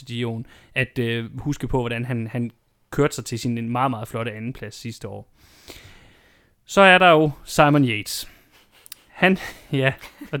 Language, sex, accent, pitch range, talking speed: Danish, male, native, 120-145 Hz, 150 wpm